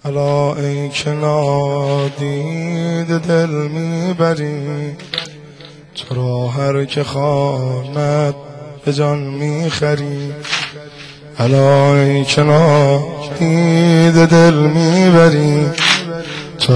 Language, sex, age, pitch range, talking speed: Persian, male, 20-39, 145-160 Hz, 75 wpm